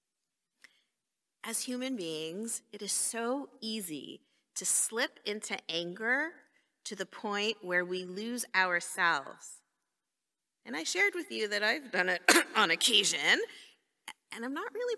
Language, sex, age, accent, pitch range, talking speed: English, female, 30-49, American, 170-280 Hz, 130 wpm